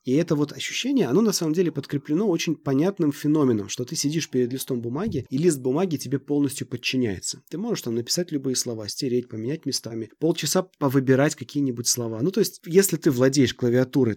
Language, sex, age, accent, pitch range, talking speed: Russian, male, 30-49, native, 120-150 Hz, 185 wpm